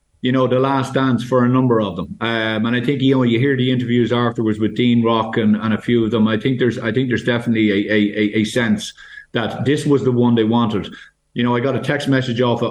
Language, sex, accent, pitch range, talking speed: English, male, Irish, 110-130 Hz, 265 wpm